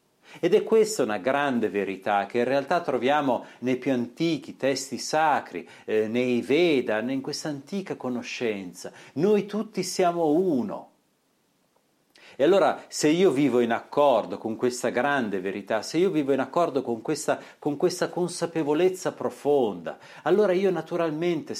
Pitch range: 120-165 Hz